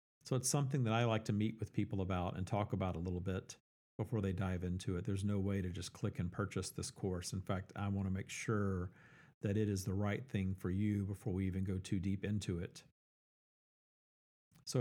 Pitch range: 95-120 Hz